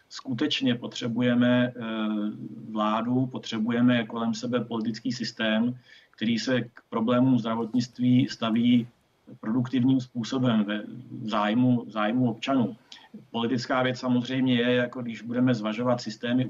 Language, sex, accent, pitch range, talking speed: Czech, male, native, 115-125 Hz, 105 wpm